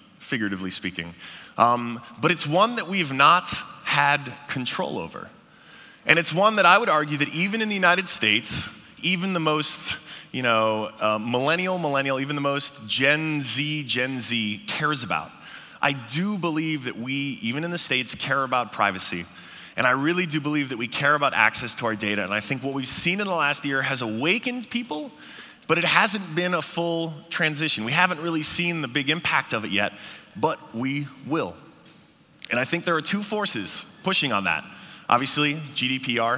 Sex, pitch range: male, 125-170 Hz